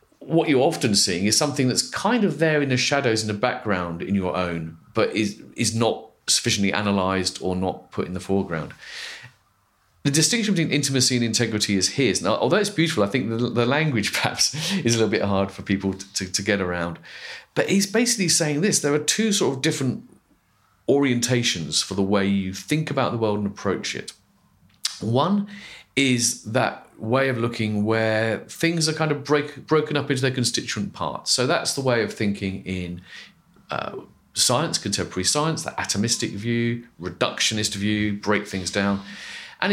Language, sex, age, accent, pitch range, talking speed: English, male, 40-59, British, 95-135 Hz, 185 wpm